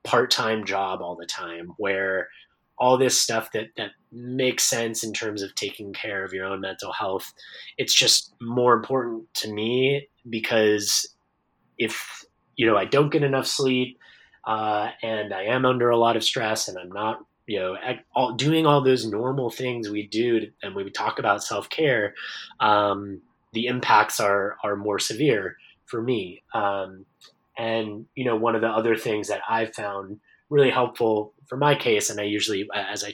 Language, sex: English, male